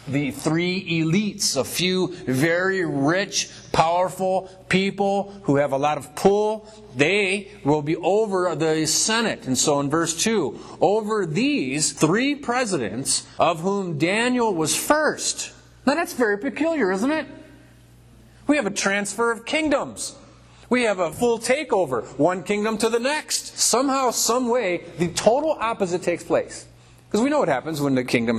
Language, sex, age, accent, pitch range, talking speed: English, male, 30-49, American, 150-215 Hz, 150 wpm